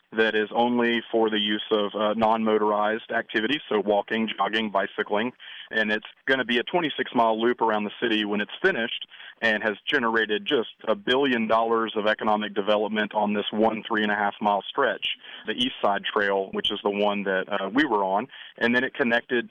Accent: American